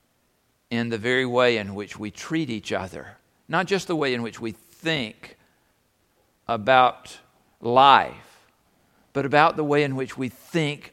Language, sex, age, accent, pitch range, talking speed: English, male, 50-69, American, 110-130 Hz, 155 wpm